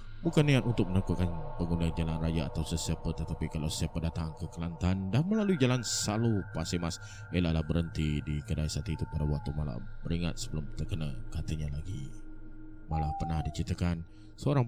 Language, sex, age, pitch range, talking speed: Malay, male, 20-39, 80-110 Hz, 155 wpm